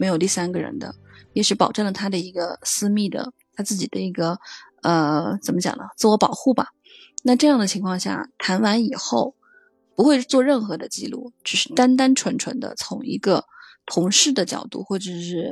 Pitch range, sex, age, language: 180-225 Hz, female, 20-39, Chinese